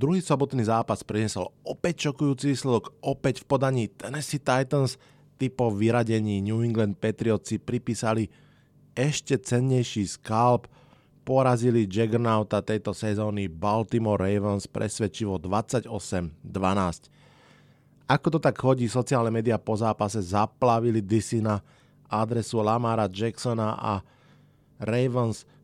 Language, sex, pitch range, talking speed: Slovak, male, 105-130 Hz, 105 wpm